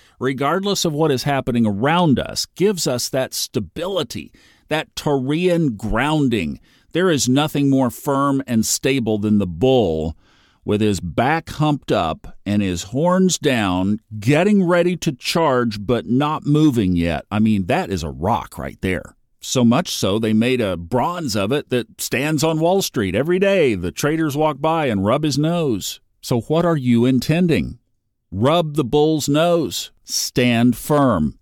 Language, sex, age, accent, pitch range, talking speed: English, male, 40-59, American, 105-150 Hz, 160 wpm